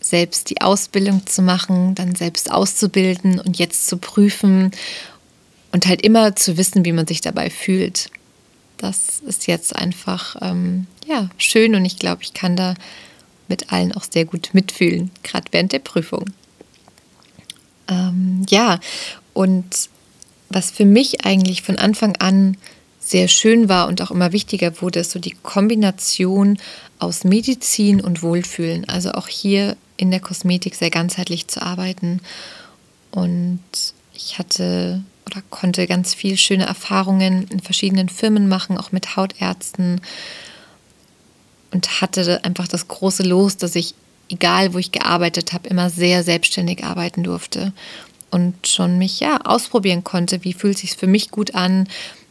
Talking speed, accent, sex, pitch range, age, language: 145 wpm, German, female, 180-195 Hz, 20-39, German